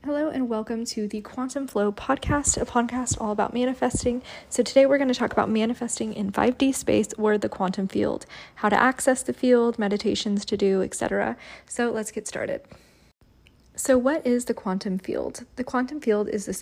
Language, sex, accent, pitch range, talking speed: English, female, American, 195-245 Hz, 190 wpm